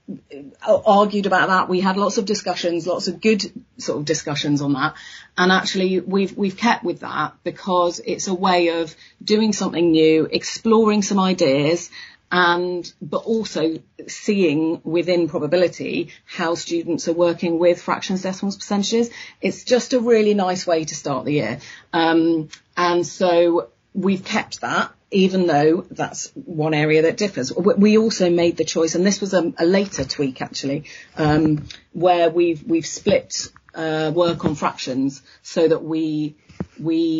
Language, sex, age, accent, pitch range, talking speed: English, female, 40-59, British, 160-190 Hz, 155 wpm